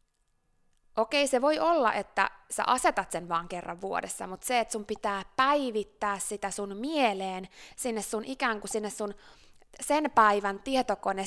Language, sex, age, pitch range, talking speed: Finnish, female, 20-39, 190-245 Hz, 155 wpm